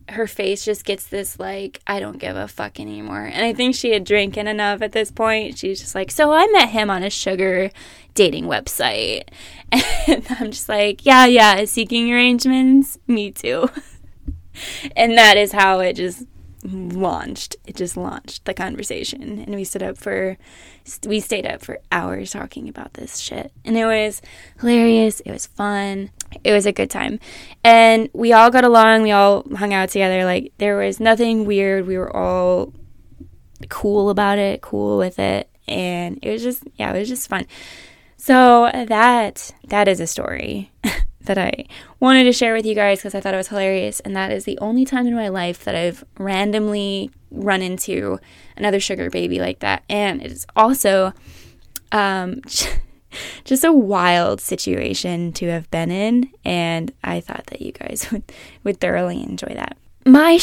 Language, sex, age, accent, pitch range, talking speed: English, female, 10-29, American, 185-230 Hz, 180 wpm